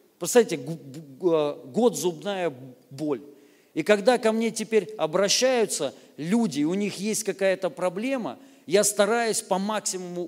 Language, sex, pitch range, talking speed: Russian, male, 155-215 Hz, 115 wpm